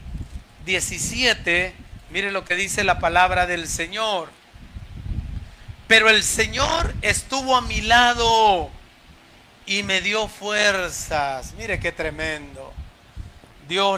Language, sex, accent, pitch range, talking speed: Spanish, male, Mexican, 160-210 Hz, 105 wpm